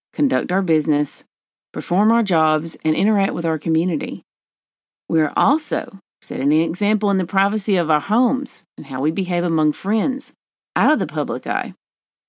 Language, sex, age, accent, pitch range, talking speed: English, female, 40-59, American, 165-245 Hz, 165 wpm